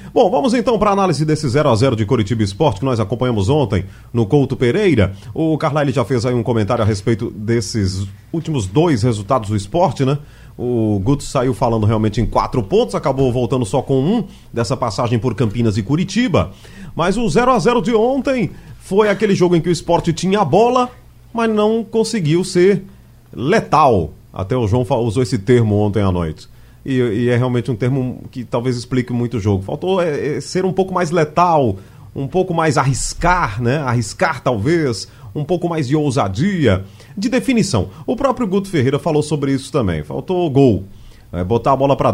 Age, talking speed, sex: 30-49, 185 wpm, male